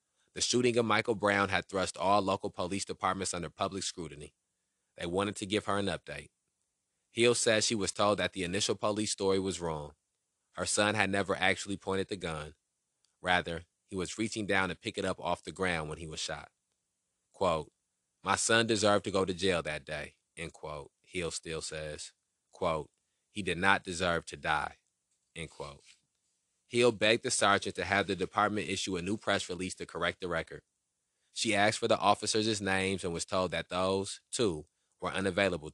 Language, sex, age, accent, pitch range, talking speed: English, male, 30-49, American, 85-105 Hz, 190 wpm